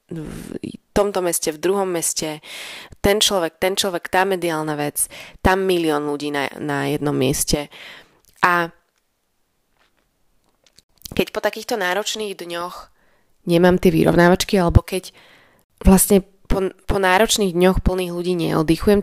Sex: female